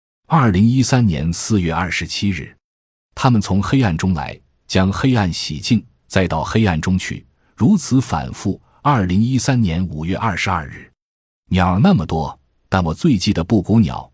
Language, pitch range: Chinese, 80-110 Hz